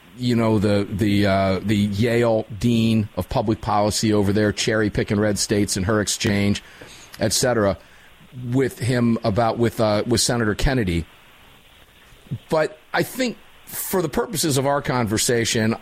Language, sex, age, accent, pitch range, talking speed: English, male, 40-59, American, 110-145 Hz, 150 wpm